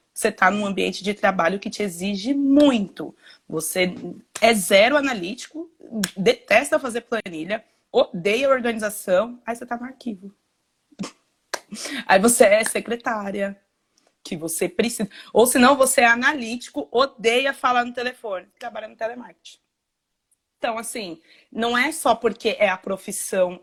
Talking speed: 130 wpm